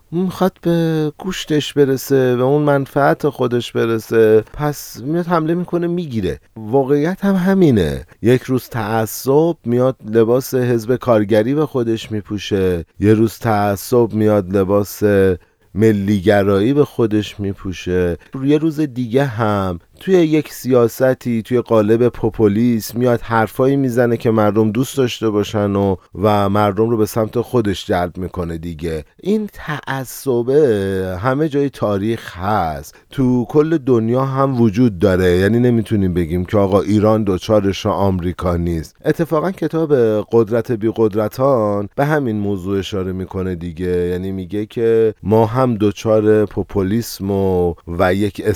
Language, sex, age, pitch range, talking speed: Persian, male, 30-49, 100-130 Hz, 130 wpm